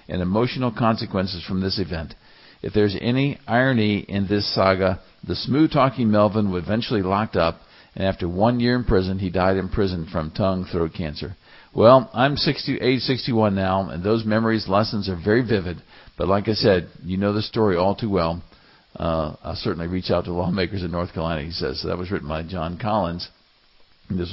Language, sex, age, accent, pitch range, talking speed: English, male, 50-69, American, 90-115 Hz, 185 wpm